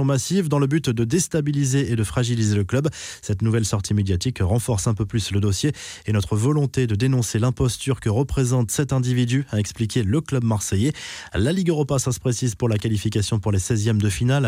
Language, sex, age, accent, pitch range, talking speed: French, male, 20-39, French, 110-140 Hz, 205 wpm